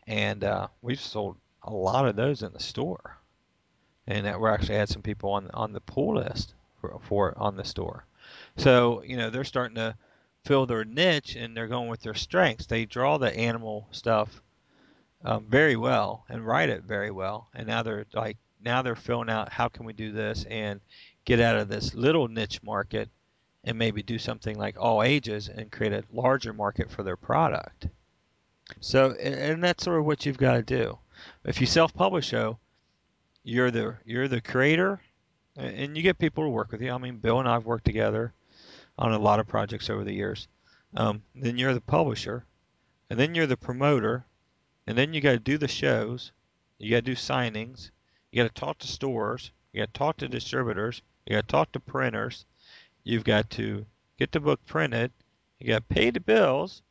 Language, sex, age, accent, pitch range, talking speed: English, male, 40-59, American, 105-130 Hz, 195 wpm